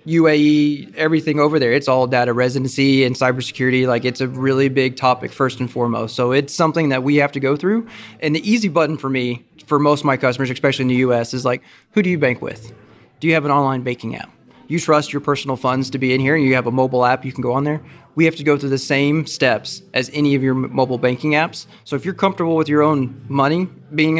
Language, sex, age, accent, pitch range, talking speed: English, male, 20-39, American, 125-150 Hz, 250 wpm